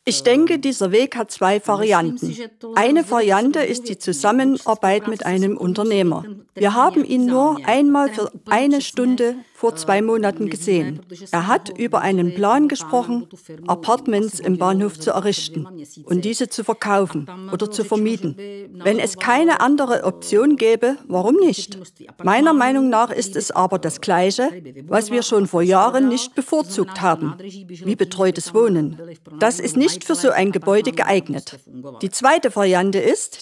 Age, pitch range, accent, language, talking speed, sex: 50-69, 185-245 Hz, German, Czech, 150 wpm, female